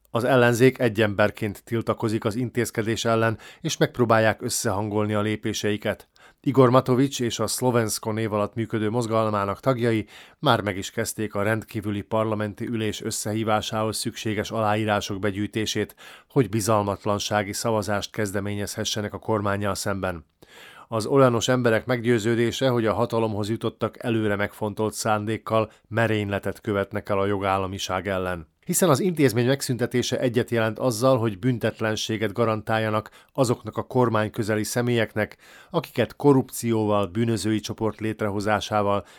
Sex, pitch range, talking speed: male, 105-120 Hz, 120 wpm